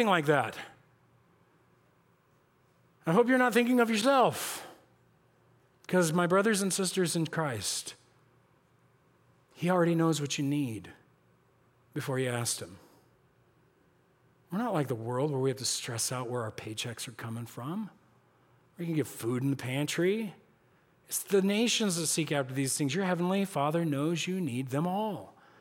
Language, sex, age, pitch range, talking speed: English, male, 40-59, 130-180 Hz, 155 wpm